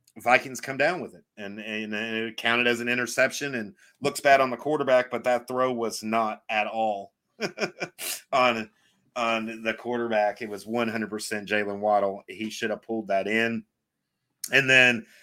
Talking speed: 170 wpm